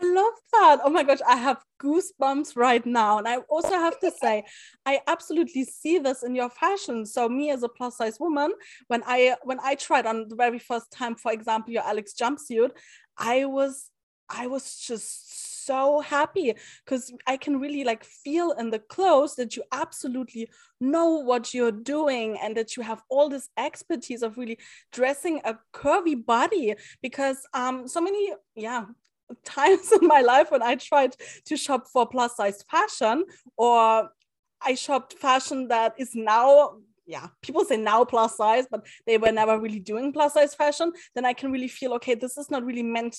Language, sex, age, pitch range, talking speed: English, female, 20-39, 220-285 Hz, 185 wpm